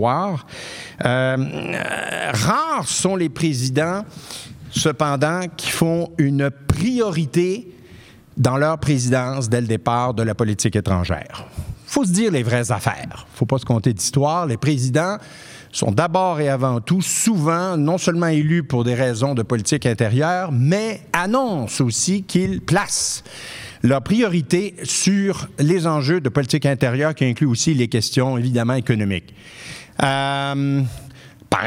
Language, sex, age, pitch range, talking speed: French, male, 50-69, 120-160 Hz, 140 wpm